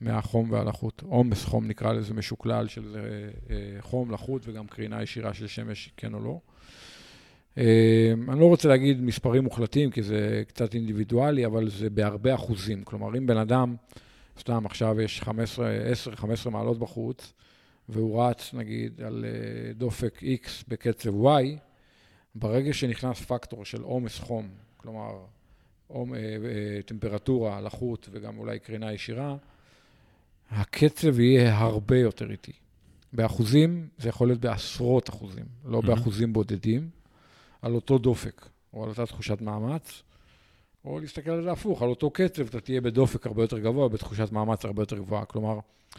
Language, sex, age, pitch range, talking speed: Hebrew, male, 50-69, 110-130 Hz, 140 wpm